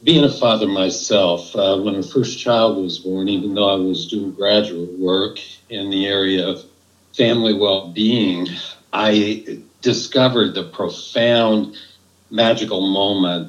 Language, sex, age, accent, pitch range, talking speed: English, male, 60-79, American, 95-115 Hz, 135 wpm